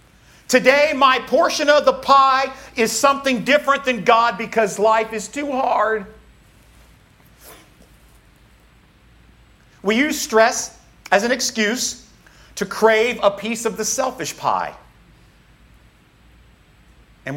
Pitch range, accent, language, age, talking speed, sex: 160-230 Hz, American, English, 50-69, 105 wpm, male